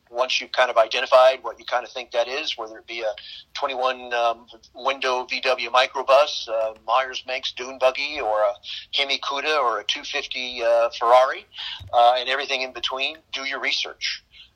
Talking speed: 180 wpm